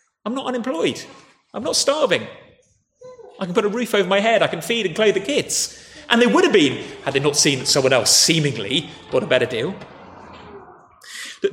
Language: English